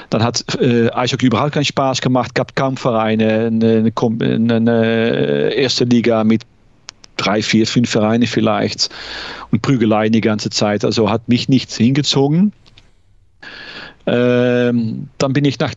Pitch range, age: 110-145 Hz, 40-59